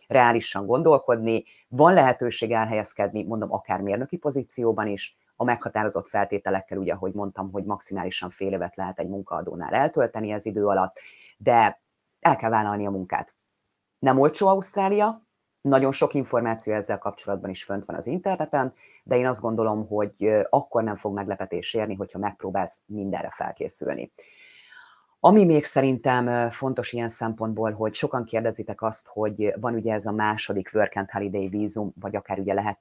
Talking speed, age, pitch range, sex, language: 155 wpm, 30-49, 100-125 Hz, female, Hungarian